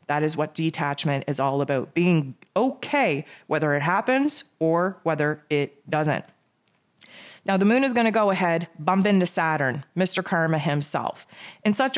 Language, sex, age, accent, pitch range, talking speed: English, female, 30-49, American, 155-185 Hz, 160 wpm